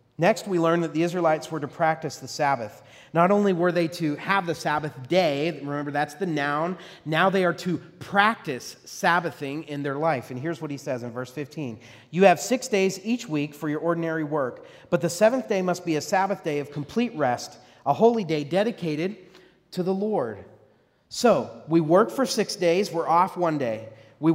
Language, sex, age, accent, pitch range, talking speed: English, male, 40-59, American, 145-195 Hz, 200 wpm